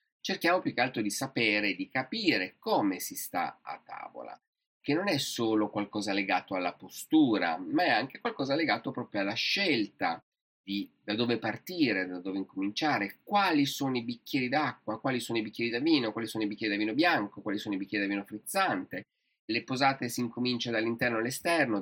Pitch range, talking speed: 100-140 Hz, 185 wpm